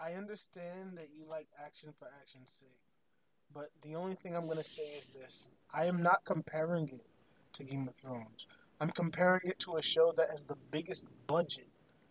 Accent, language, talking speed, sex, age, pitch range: American, English, 195 wpm, male, 20-39, 165-240 Hz